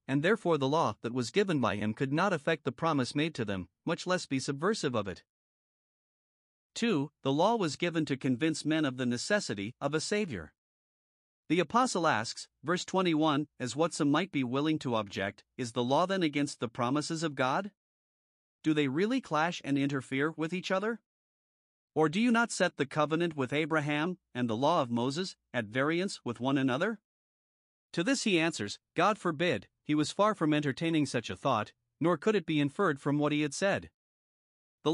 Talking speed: 190 wpm